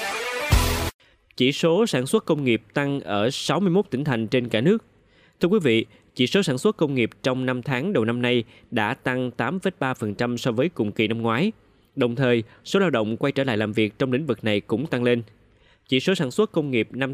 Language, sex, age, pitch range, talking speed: Vietnamese, male, 20-39, 115-150 Hz, 215 wpm